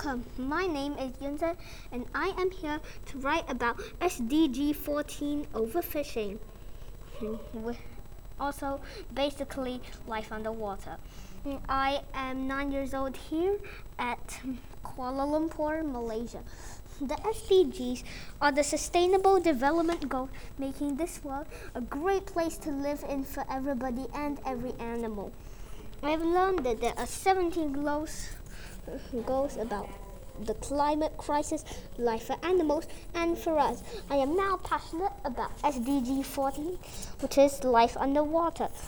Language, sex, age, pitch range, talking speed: English, female, 20-39, 255-315 Hz, 120 wpm